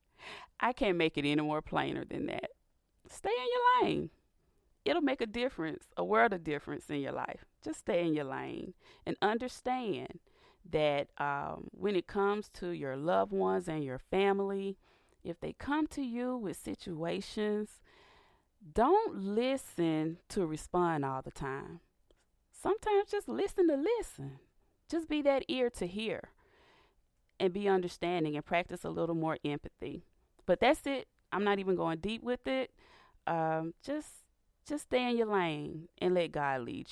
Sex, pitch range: female, 150-240 Hz